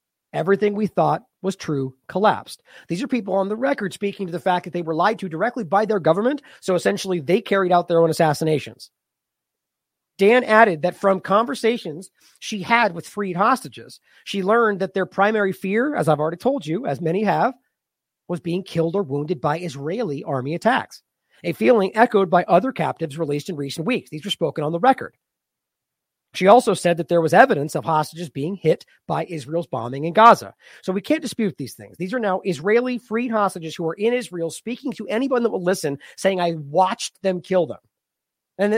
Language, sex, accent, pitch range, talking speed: English, male, American, 165-215 Hz, 195 wpm